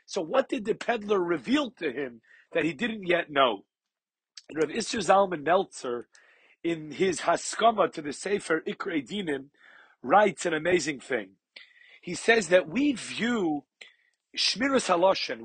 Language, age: English, 40-59